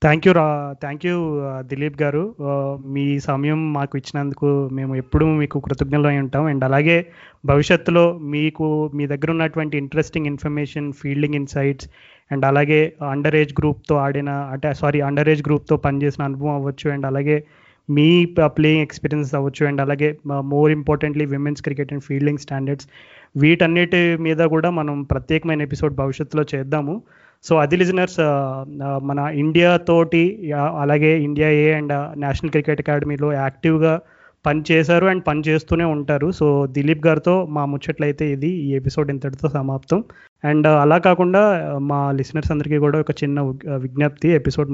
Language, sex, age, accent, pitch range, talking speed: Telugu, male, 20-39, native, 140-155 Hz, 145 wpm